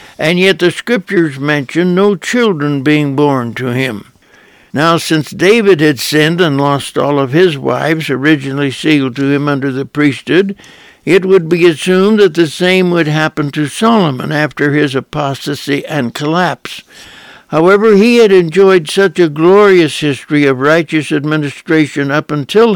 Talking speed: 155 wpm